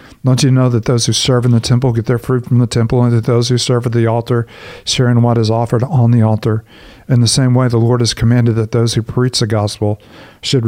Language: English